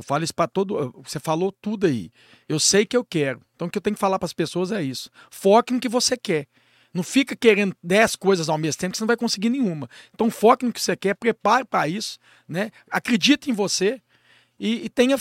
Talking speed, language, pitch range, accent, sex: 240 wpm, Portuguese, 180-240 Hz, Brazilian, male